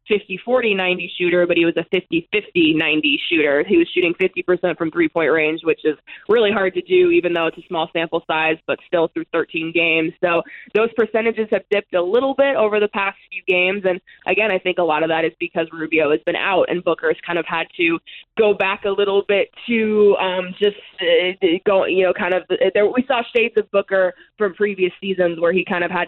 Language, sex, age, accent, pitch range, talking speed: English, female, 20-39, American, 165-200 Hz, 220 wpm